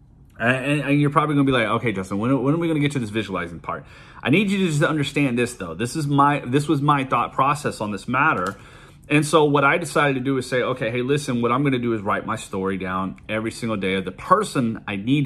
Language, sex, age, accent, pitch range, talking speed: English, male, 30-49, American, 105-140 Hz, 260 wpm